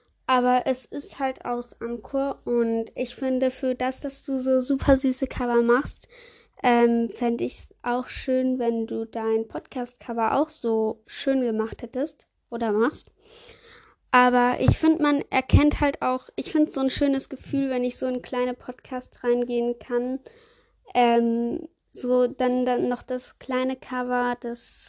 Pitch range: 235-270 Hz